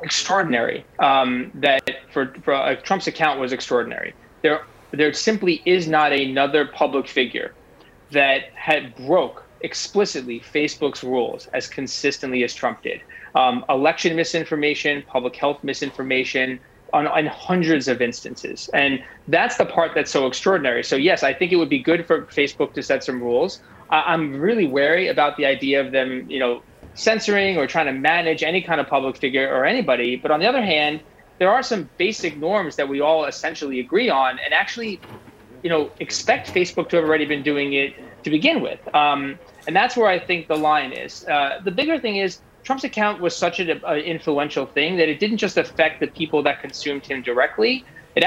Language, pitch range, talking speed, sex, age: English, 135-170 Hz, 185 wpm, male, 20-39